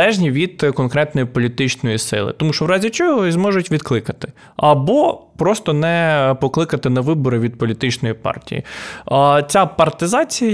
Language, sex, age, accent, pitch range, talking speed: Ukrainian, male, 20-39, native, 135-180 Hz, 125 wpm